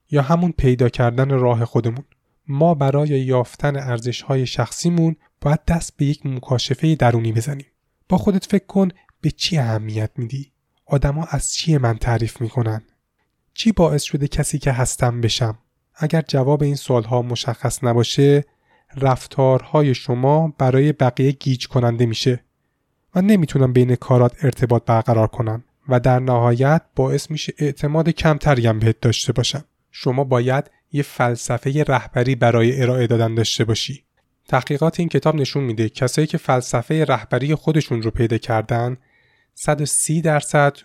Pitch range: 120-145 Hz